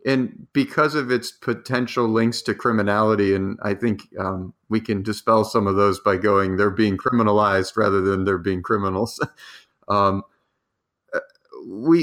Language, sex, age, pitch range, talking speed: English, male, 30-49, 105-125 Hz, 150 wpm